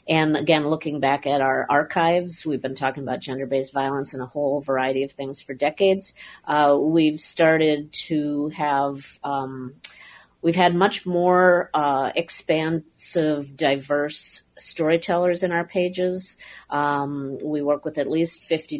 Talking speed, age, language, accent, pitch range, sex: 145 wpm, 40-59, English, American, 140-165 Hz, female